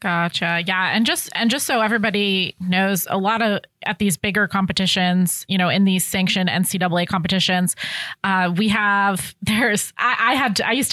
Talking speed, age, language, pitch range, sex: 175 wpm, 20-39, English, 190-215 Hz, female